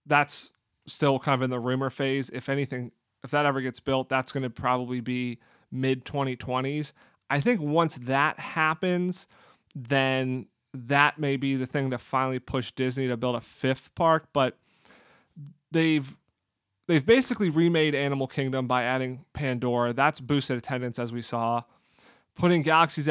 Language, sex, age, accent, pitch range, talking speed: English, male, 30-49, American, 125-145 Hz, 155 wpm